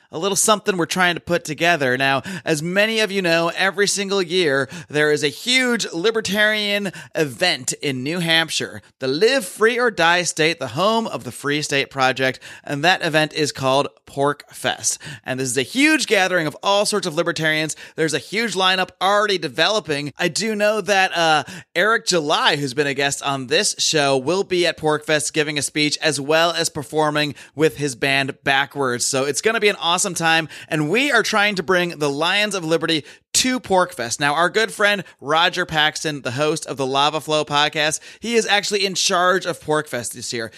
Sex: male